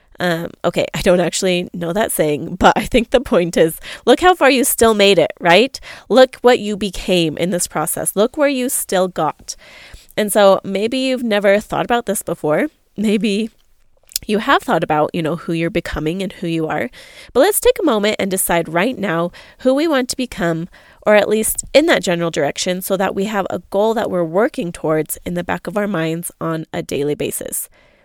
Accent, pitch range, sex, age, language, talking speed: American, 170-215 Hz, female, 20-39, English, 210 wpm